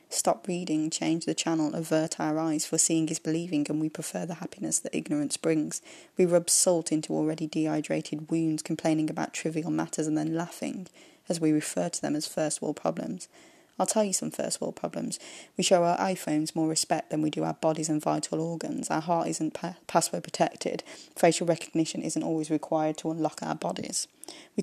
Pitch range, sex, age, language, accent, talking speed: 155-175 Hz, female, 20-39, English, British, 190 wpm